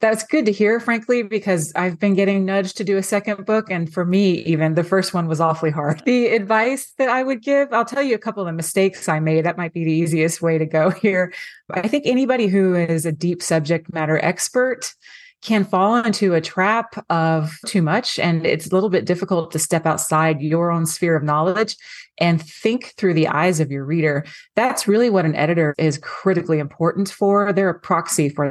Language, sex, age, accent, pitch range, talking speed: English, female, 30-49, American, 165-210 Hz, 215 wpm